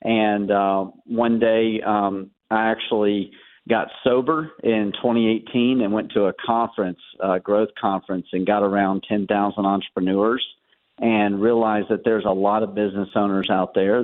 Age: 40-59